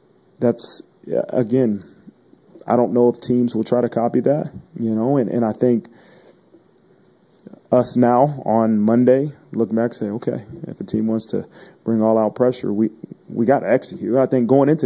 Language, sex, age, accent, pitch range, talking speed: English, male, 30-49, American, 110-125 Hz, 180 wpm